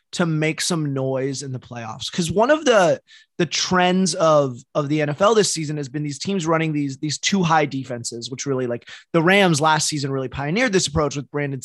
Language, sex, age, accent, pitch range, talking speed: English, male, 20-39, American, 140-185 Hz, 215 wpm